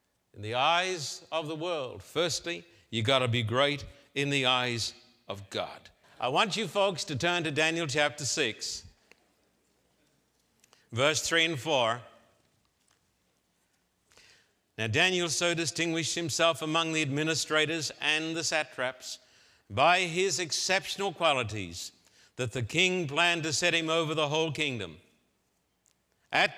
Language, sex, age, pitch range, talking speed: English, male, 60-79, 130-170 Hz, 130 wpm